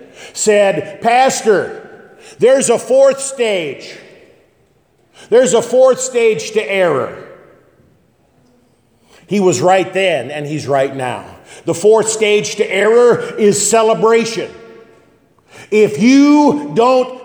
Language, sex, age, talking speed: English, male, 50-69, 105 wpm